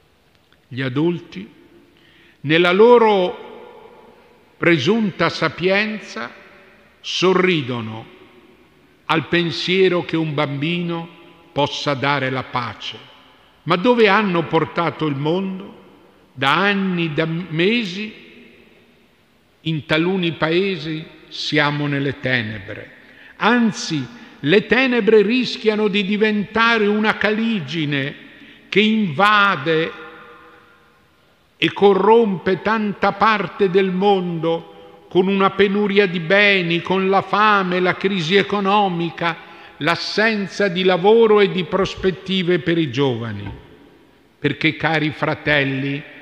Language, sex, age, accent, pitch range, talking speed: Italian, male, 50-69, native, 145-200 Hz, 90 wpm